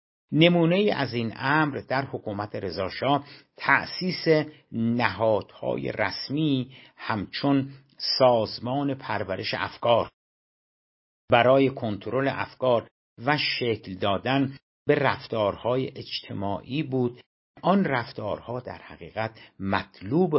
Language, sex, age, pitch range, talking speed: Persian, male, 60-79, 105-140 Hz, 85 wpm